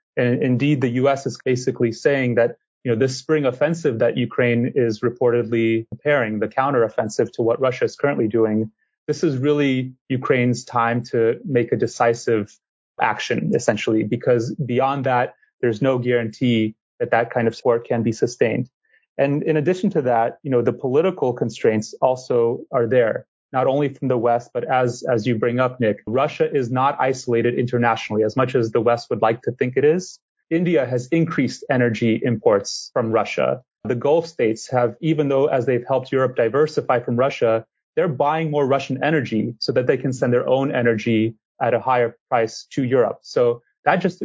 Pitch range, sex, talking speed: 115-145 Hz, male, 185 wpm